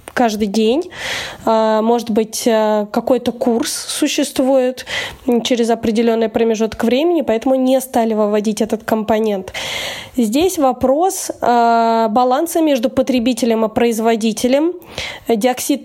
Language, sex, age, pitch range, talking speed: Russian, female, 20-39, 225-260 Hz, 95 wpm